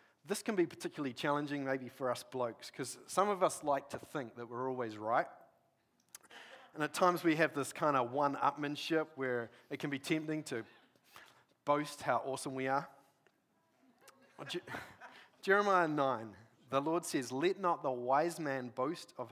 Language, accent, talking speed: English, Australian, 160 wpm